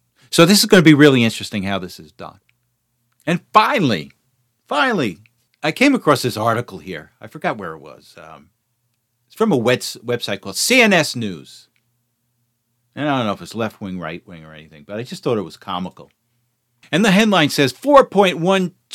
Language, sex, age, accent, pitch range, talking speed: English, male, 50-69, American, 120-175 Hz, 185 wpm